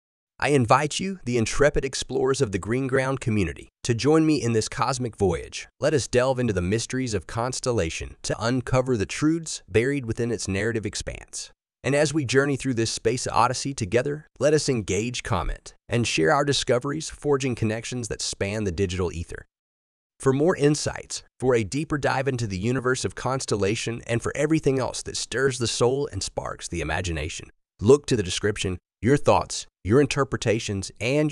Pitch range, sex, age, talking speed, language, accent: 100-140 Hz, male, 30-49, 175 wpm, English, American